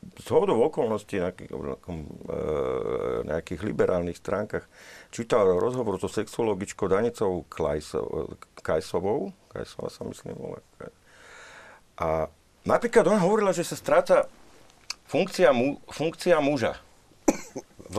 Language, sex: Slovak, male